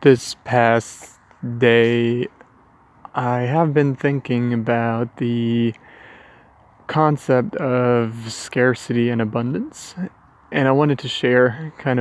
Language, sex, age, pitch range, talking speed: English, male, 20-39, 120-135 Hz, 100 wpm